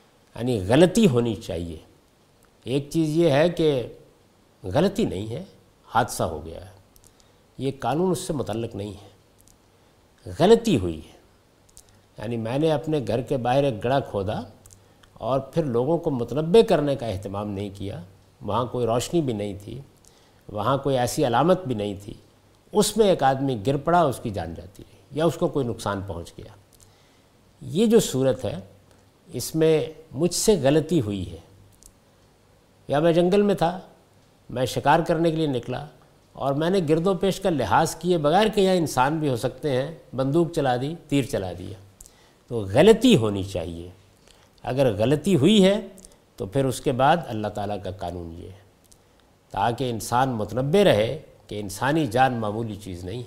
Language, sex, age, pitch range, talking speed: Urdu, male, 50-69, 100-160 Hz, 170 wpm